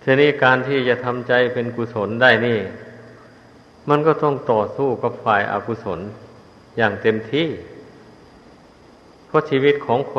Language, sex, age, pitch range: Thai, male, 50-69, 110-125 Hz